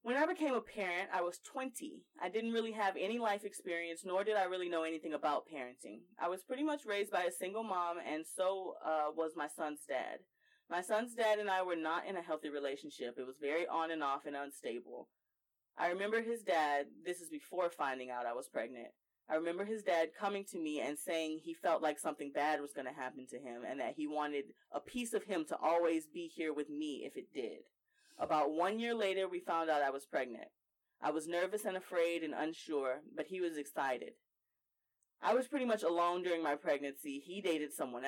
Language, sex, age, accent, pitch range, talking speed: English, female, 20-39, American, 155-205 Hz, 220 wpm